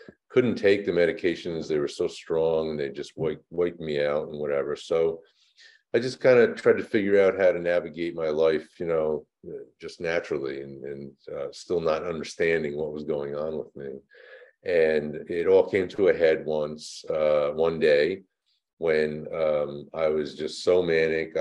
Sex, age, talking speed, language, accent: male, 50-69, 180 wpm, English, American